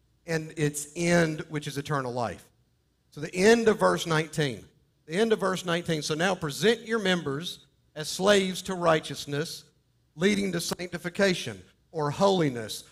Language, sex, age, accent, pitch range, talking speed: English, male, 50-69, American, 150-195 Hz, 150 wpm